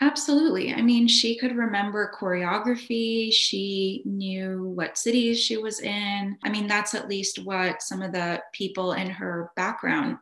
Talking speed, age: 160 wpm, 20-39